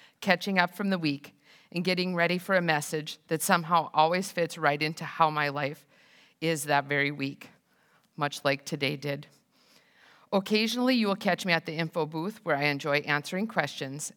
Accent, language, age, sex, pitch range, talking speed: American, English, 50-69, female, 150-185 Hz, 180 wpm